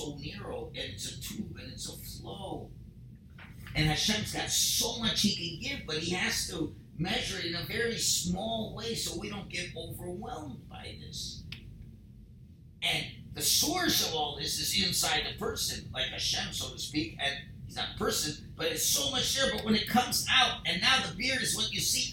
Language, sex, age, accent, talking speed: English, male, 50-69, American, 200 wpm